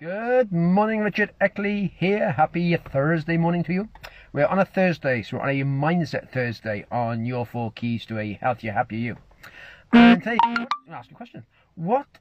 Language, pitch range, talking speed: English, 130-175 Hz, 200 wpm